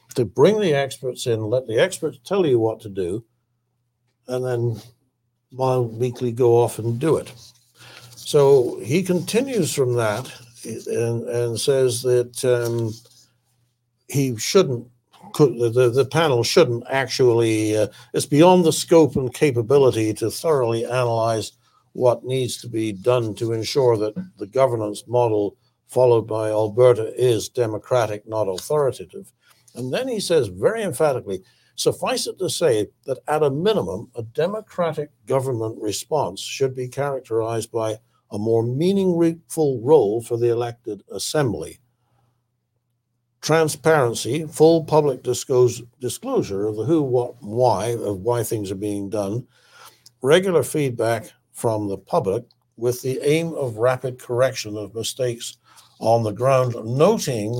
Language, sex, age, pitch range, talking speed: English, male, 60-79, 115-135 Hz, 135 wpm